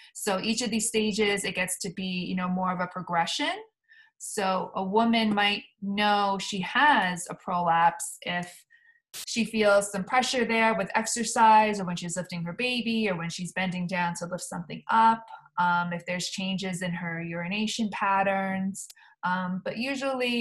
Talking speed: 170 wpm